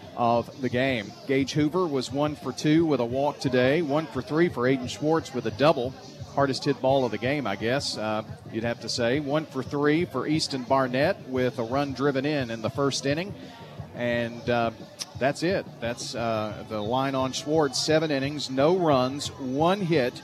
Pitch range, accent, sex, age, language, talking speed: 125-150 Hz, American, male, 40-59, English, 195 wpm